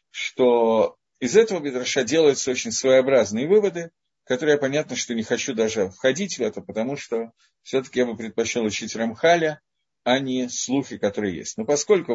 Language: Russian